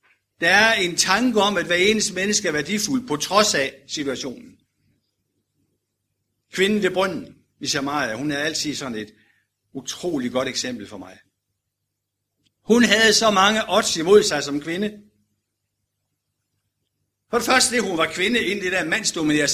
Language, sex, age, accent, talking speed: Danish, male, 60-79, native, 155 wpm